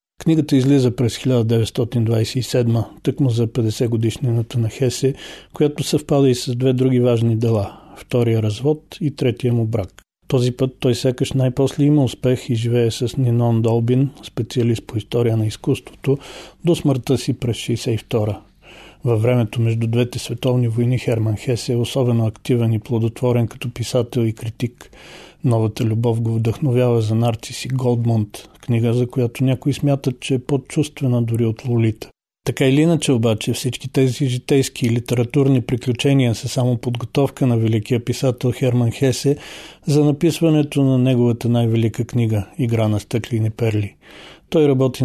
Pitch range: 115-130 Hz